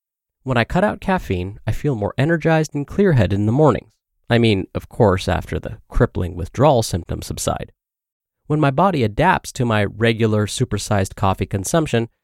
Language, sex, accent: English, male, American